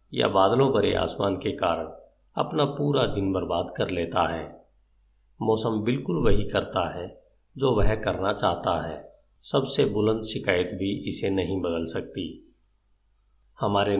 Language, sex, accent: Hindi, male, native